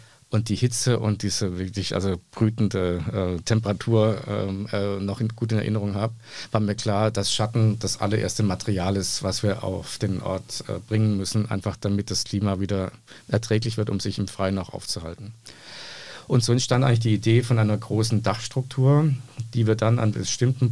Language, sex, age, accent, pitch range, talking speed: German, male, 50-69, German, 100-115 Hz, 175 wpm